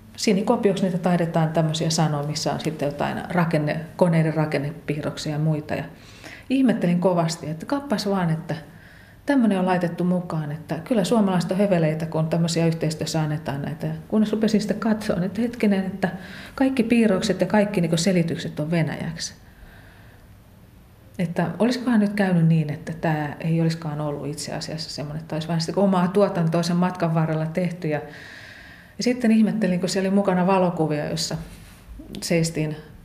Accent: native